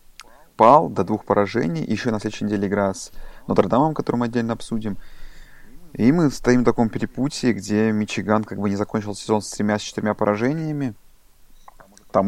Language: Russian